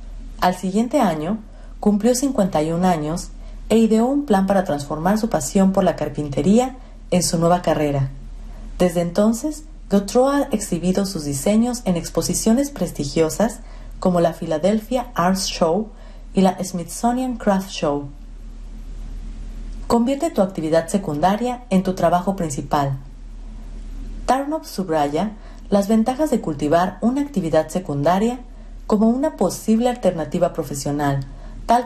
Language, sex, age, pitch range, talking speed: Spanish, female, 40-59, 160-225 Hz, 120 wpm